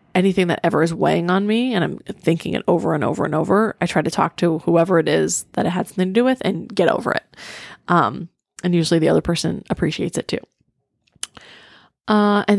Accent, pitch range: American, 170-205 Hz